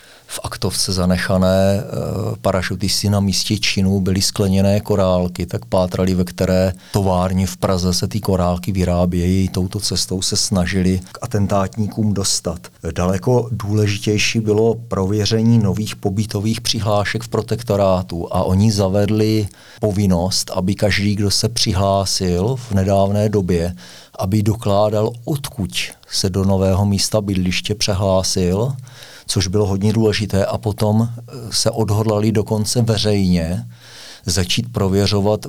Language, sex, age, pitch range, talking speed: Czech, male, 40-59, 95-105 Hz, 120 wpm